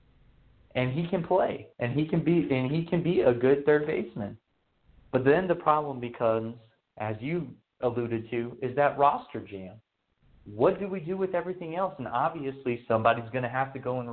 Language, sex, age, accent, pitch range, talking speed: English, male, 30-49, American, 115-140 Hz, 190 wpm